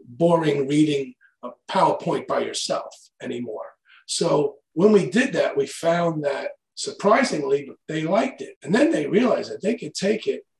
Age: 40-59